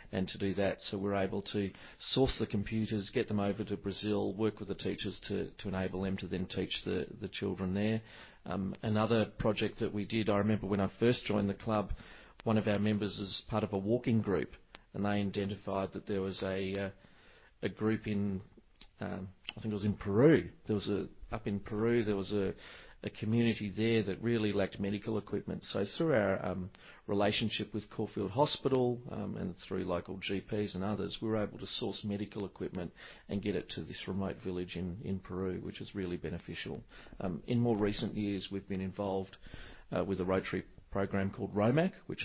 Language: English